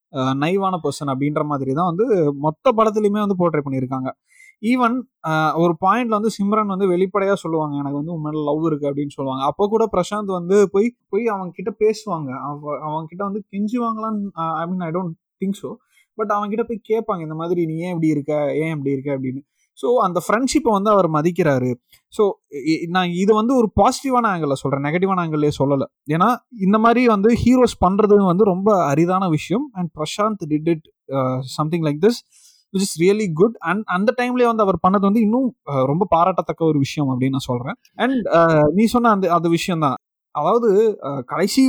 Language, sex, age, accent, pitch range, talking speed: Tamil, male, 30-49, native, 155-215 Hz, 175 wpm